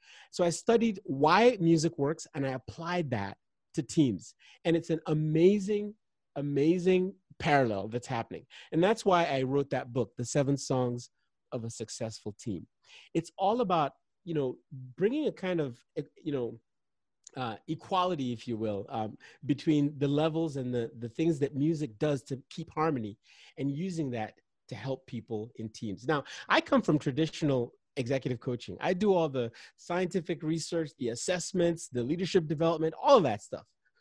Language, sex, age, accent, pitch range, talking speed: English, male, 30-49, American, 125-175 Hz, 165 wpm